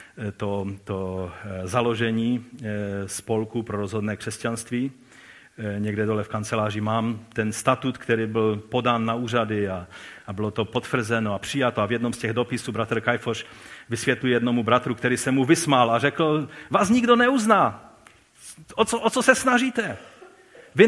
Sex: male